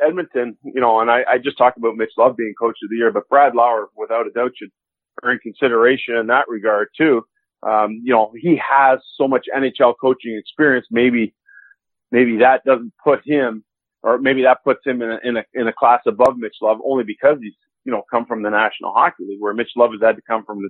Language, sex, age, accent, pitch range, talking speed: English, male, 40-59, American, 120-180 Hz, 230 wpm